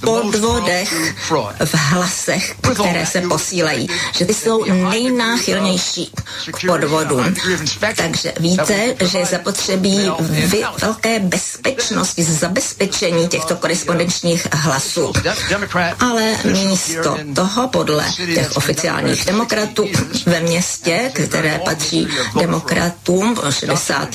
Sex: female